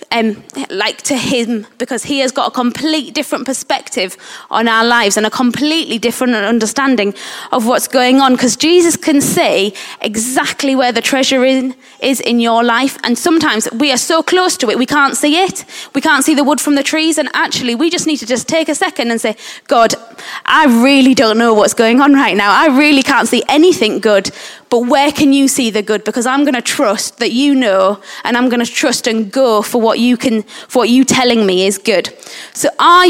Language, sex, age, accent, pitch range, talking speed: English, female, 20-39, British, 230-300 Hz, 220 wpm